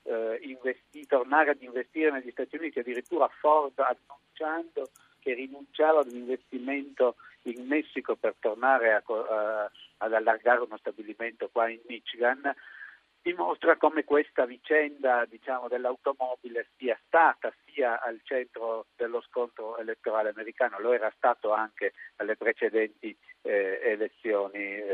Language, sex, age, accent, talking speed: Italian, male, 50-69, native, 125 wpm